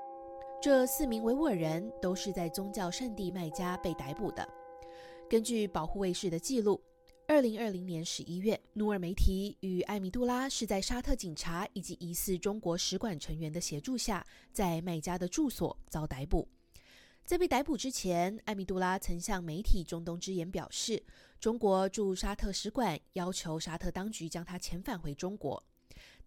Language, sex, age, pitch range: Chinese, female, 20-39, 175-230 Hz